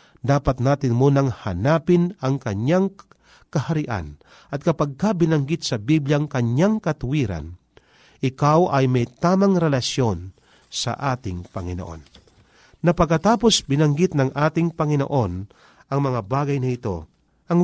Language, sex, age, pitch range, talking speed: Filipino, male, 40-59, 115-160 Hz, 110 wpm